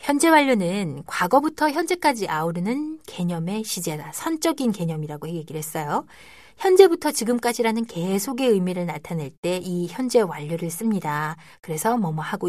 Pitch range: 165-255 Hz